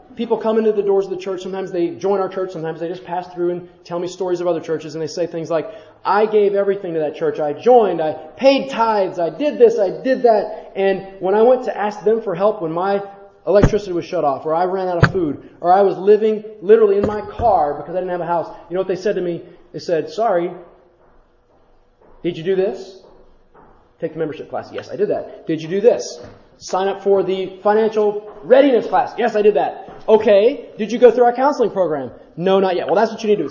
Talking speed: 245 wpm